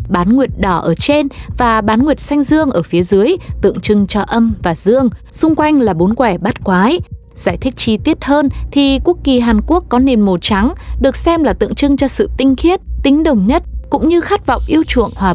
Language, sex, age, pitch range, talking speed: Vietnamese, female, 20-39, 200-280 Hz, 230 wpm